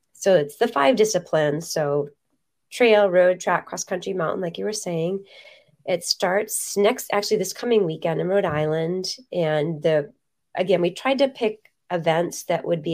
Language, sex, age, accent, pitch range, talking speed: English, female, 30-49, American, 165-210 Hz, 165 wpm